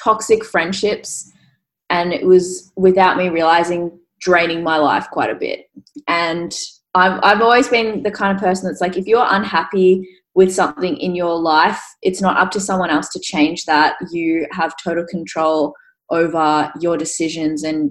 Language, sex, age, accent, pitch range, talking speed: English, female, 20-39, Australian, 160-190 Hz, 170 wpm